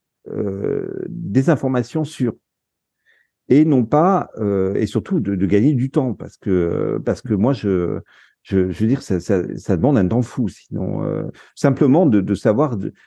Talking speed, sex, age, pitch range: 180 wpm, male, 50-69, 100-135 Hz